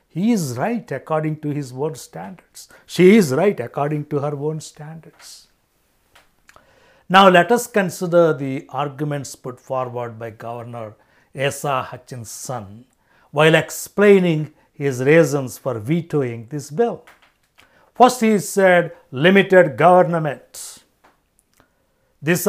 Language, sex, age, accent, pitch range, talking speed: English, male, 60-79, Indian, 135-175 Hz, 110 wpm